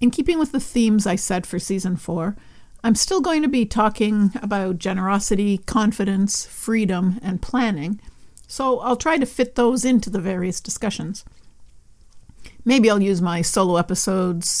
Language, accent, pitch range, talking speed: English, American, 190-240 Hz, 155 wpm